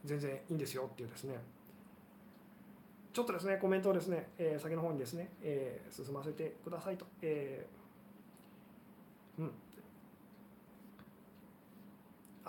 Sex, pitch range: male, 140-205 Hz